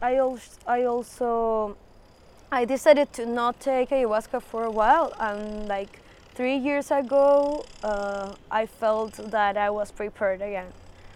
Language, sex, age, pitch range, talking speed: English, female, 20-39, 200-235 Hz, 140 wpm